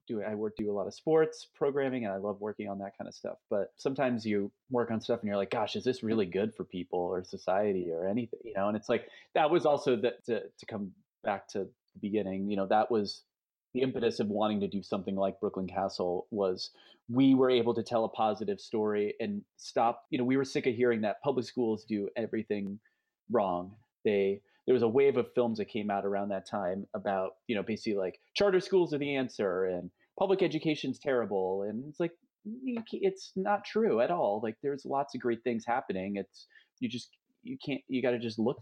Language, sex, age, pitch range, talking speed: English, male, 30-49, 100-130 Hz, 225 wpm